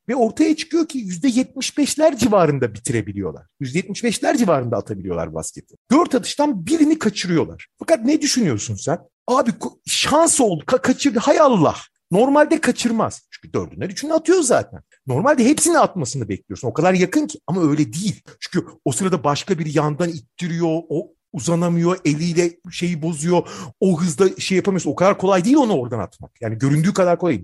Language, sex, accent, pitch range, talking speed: Turkish, male, native, 160-250 Hz, 160 wpm